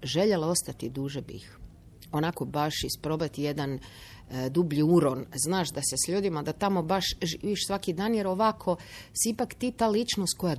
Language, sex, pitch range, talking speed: Croatian, female, 140-200 Hz, 165 wpm